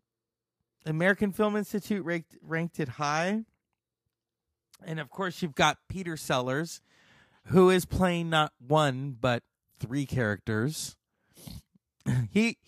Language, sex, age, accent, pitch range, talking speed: English, male, 30-49, American, 135-180 Hz, 110 wpm